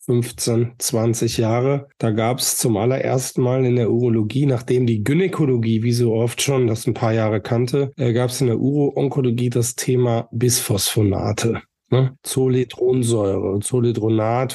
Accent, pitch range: German, 115-130 Hz